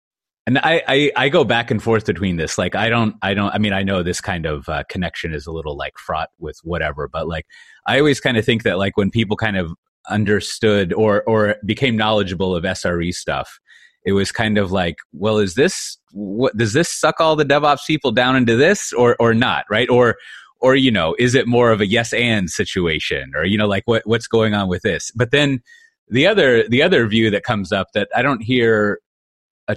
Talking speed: 225 wpm